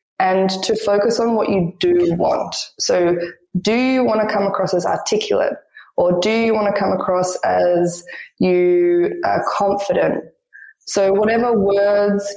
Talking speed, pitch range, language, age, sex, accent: 150 wpm, 185-225 Hz, English, 20-39, female, Australian